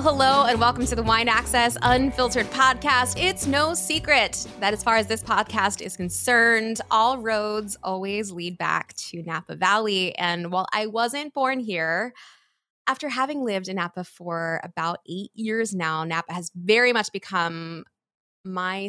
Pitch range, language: 175-225 Hz, English